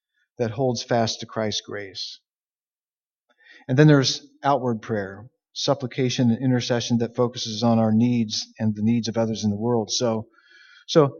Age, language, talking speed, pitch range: 40-59, English, 155 wpm, 120-160 Hz